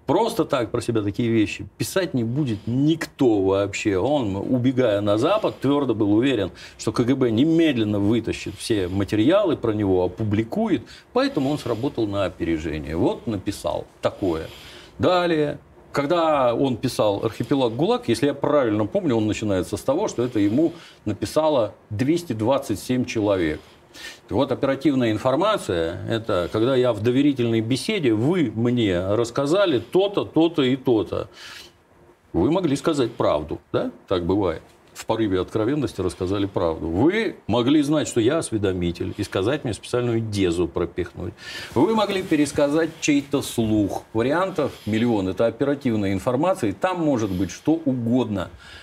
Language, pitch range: Russian, 105-145 Hz